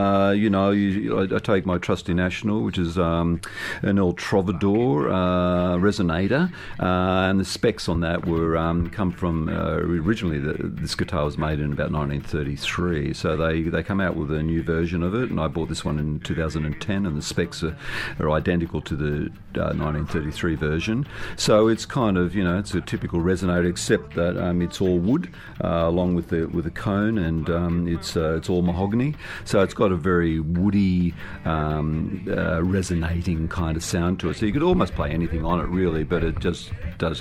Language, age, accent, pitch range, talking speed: English, 50-69, Australian, 80-95 Hz, 200 wpm